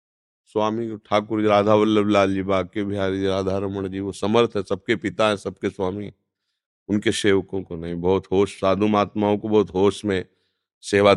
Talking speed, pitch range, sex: 185 wpm, 90-115 Hz, male